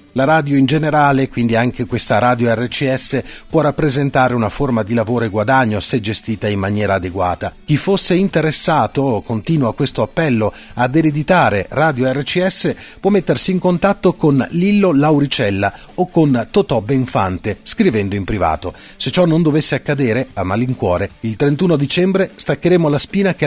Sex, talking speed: male, 155 wpm